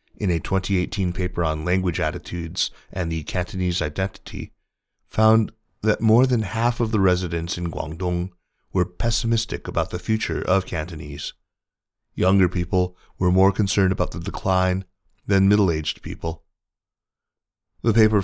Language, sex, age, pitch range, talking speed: English, male, 30-49, 85-105 Hz, 135 wpm